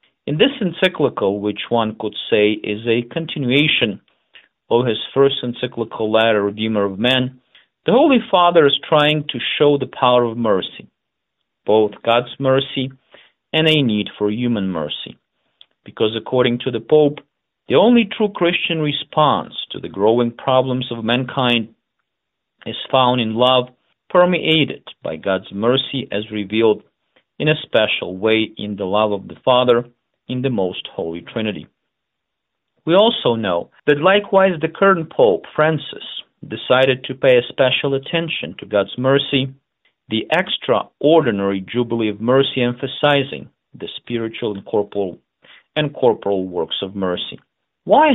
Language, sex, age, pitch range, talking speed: Ukrainian, male, 40-59, 110-140 Hz, 140 wpm